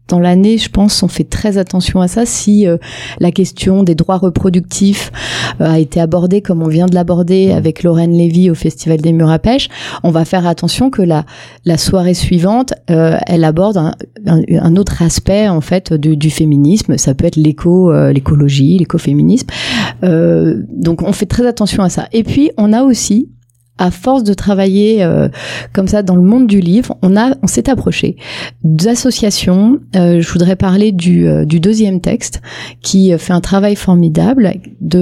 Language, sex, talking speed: French, female, 190 wpm